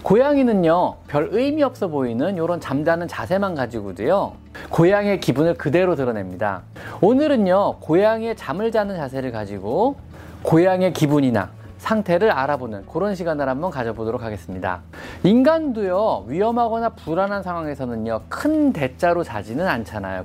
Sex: male